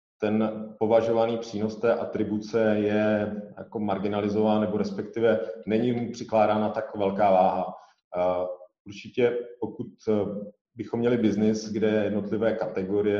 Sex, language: male, Czech